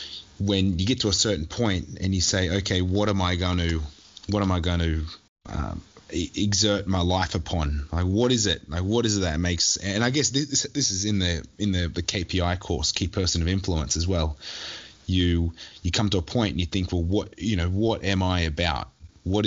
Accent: Australian